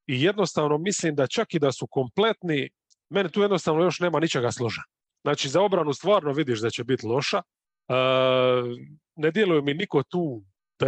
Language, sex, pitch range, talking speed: English, male, 135-180 Hz, 175 wpm